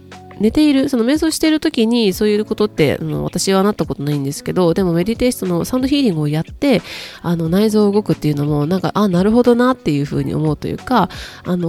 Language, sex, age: Japanese, female, 20-39